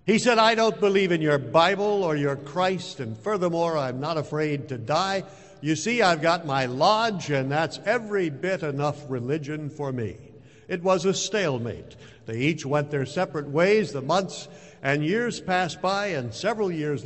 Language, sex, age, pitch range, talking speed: English, male, 60-79, 135-180 Hz, 180 wpm